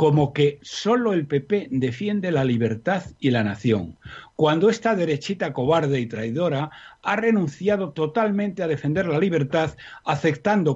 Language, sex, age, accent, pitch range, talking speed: Spanish, male, 60-79, Spanish, 135-180 Hz, 140 wpm